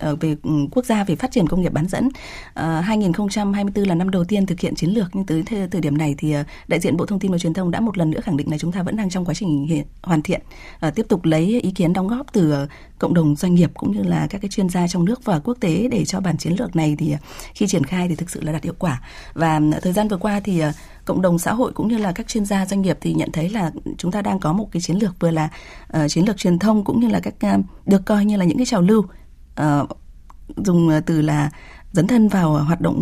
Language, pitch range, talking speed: Vietnamese, 160-200 Hz, 275 wpm